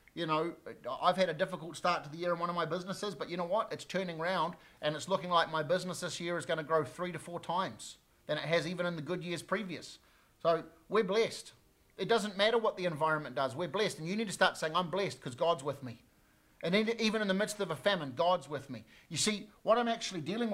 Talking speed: 255 wpm